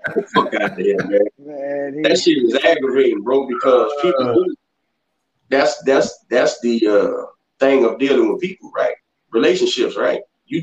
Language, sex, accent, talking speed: English, male, American, 130 wpm